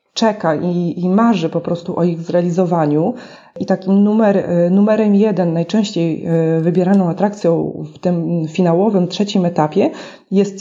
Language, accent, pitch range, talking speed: Polish, native, 180-235 Hz, 125 wpm